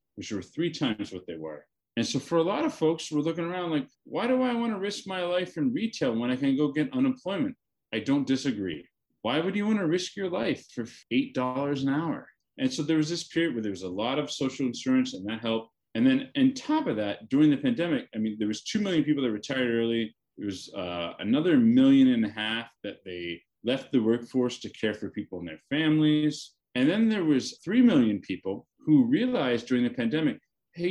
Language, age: English, 30-49